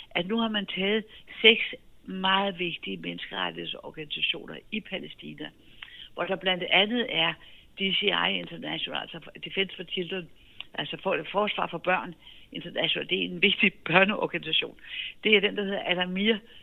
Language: Danish